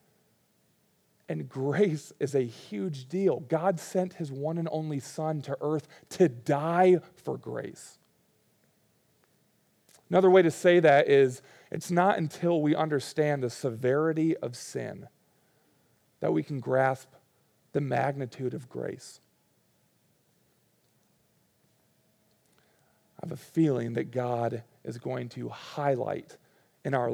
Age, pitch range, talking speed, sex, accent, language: 40-59, 125-160 Hz, 120 wpm, male, American, English